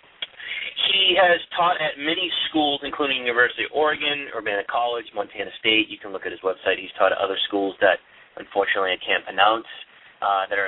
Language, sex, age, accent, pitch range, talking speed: English, male, 30-49, American, 120-170 Hz, 185 wpm